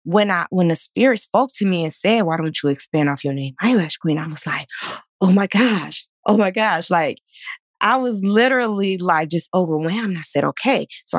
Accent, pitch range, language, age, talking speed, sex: American, 155-215 Hz, English, 20-39, 210 wpm, female